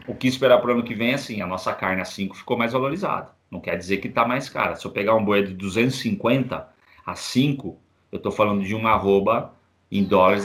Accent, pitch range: Brazilian, 105-130 Hz